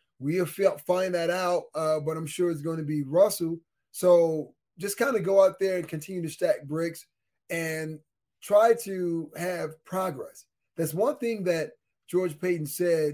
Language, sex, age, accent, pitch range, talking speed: English, male, 20-39, American, 155-180 Hz, 170 wpm